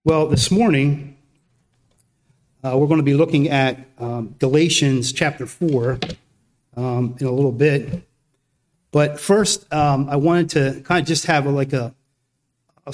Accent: American